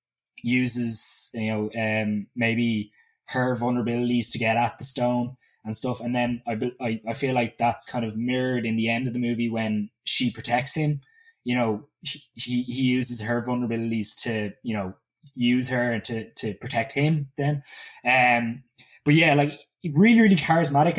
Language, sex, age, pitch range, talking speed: English, male, 20-39, 120-140 Hz, 170 wpm